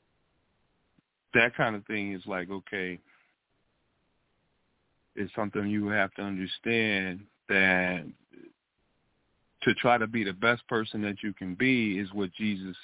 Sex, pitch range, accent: male, 100-120 Hz, American